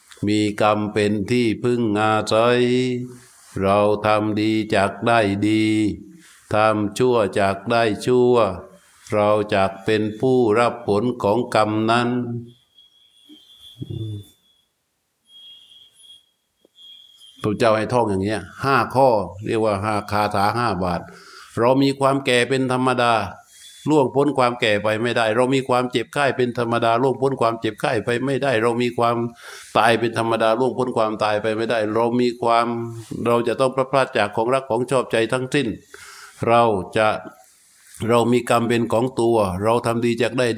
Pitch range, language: 105-125 Hz, Thai